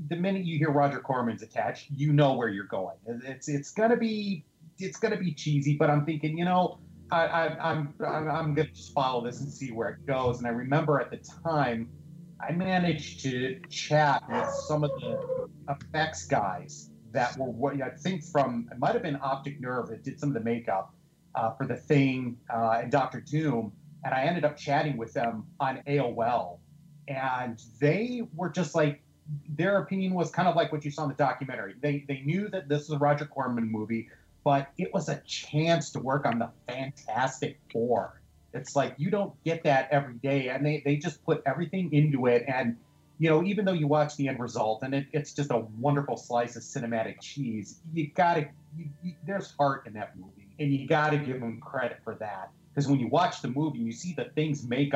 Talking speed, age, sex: 210 wpm, 30-49, male